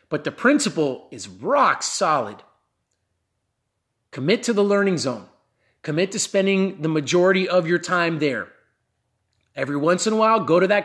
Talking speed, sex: 155 wpm, male